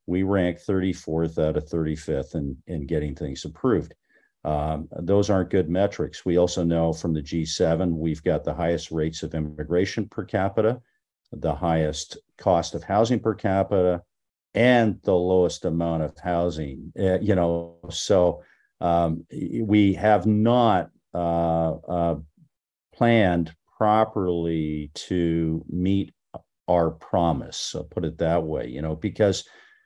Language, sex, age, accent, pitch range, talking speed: English, male, 50-69, American, 80-105 Hz, 135 wpm